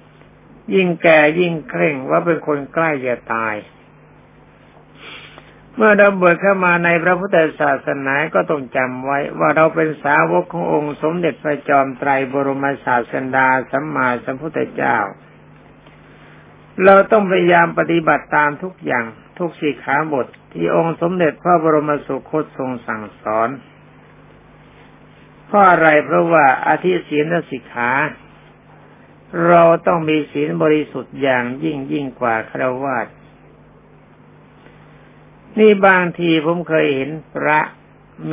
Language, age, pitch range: Thai, 60-79, 140-170 Hz